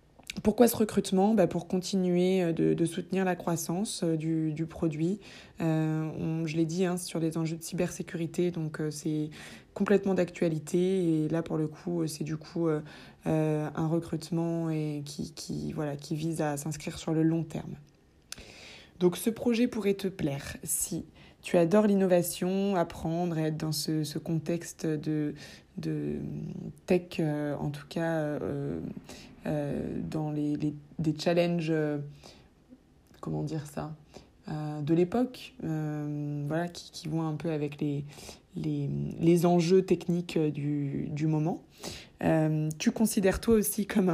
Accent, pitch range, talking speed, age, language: French, 155-180 Hz, 155 wpm, 20-39, French